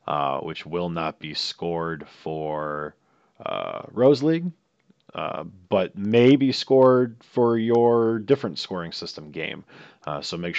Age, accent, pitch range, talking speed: 40-59, American, 80-100 Hz, 135 wpm